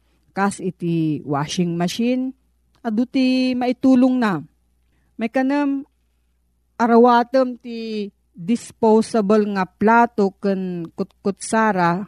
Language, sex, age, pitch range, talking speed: Filipino, female, 40-59, 175-235 Hz, 70 wpm